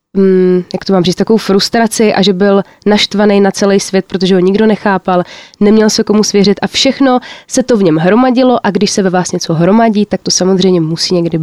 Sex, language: female, Czech